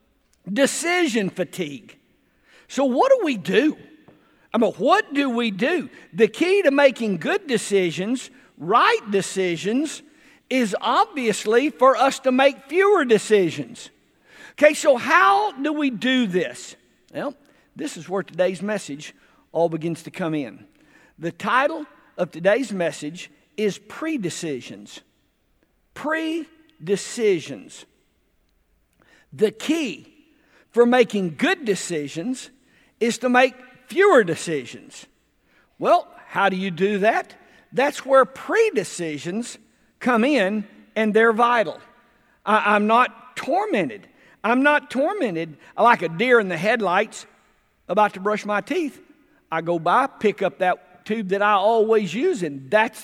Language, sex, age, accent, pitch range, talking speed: English, male, 50-69, American, 195-275 Hz, 125 wpm